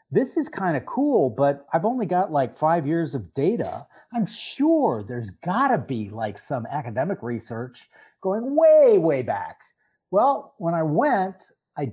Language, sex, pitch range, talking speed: English, male, 135-200 Hz, 165 wpm